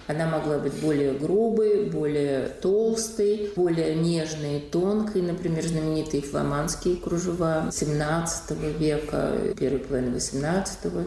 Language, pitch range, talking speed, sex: Russian, 135-165 Hz, 105 wpm, female